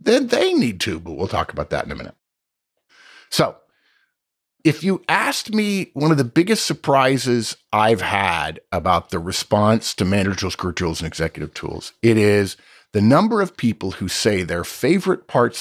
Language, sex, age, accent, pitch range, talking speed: English, male, 50-69, American, 95-145 Hz, 170 wpm